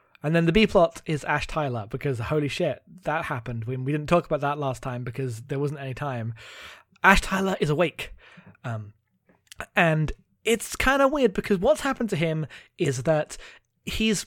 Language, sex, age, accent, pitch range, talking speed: English, male, 20-39, British, 135-175 Hz, 180 wpm